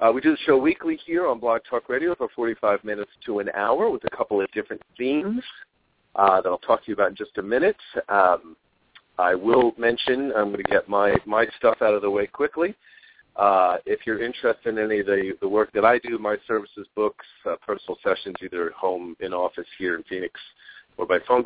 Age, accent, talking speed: 50-69, American, 225 wpm